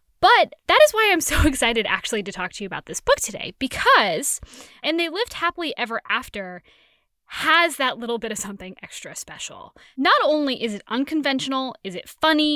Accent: American